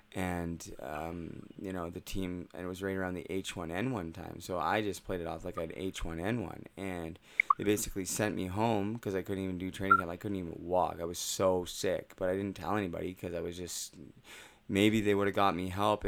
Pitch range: 90-105 Hz